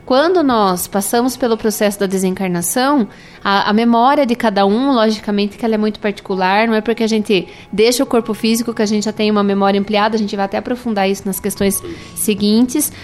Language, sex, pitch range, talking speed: Portuguese, female, 215-270 Hz, 205 wpm